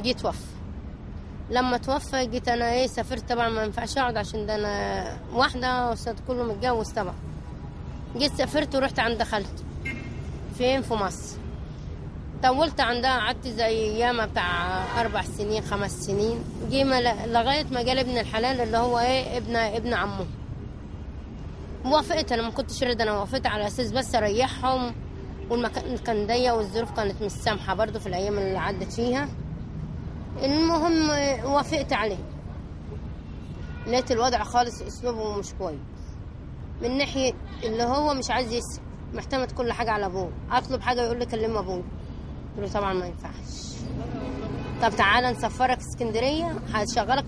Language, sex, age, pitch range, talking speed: Arabic, female, 20-39, 220-255 Hz, 135 wpm